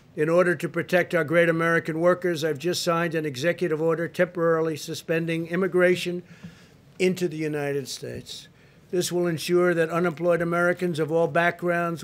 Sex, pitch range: male, 145-170 Hz